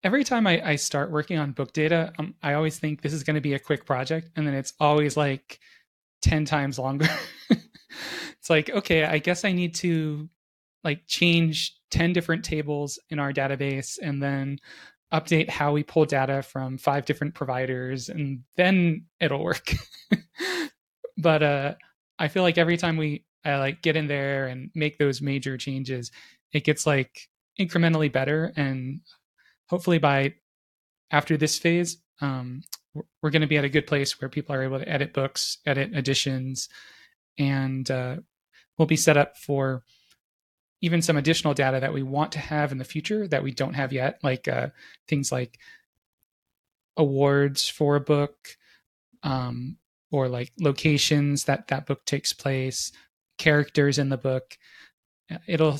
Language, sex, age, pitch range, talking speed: English, male, 20-39, 135-160 Hz, 165 wpm